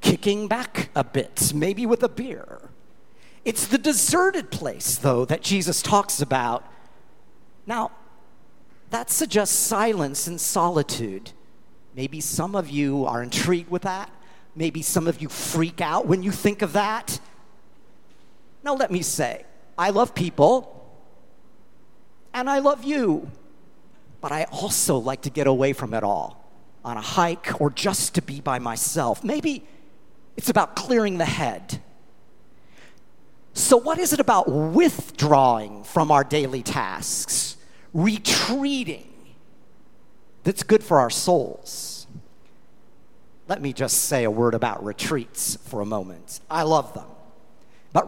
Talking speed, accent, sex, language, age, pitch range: 135 wpm, American, male, English, 50-69, 145-235 Hz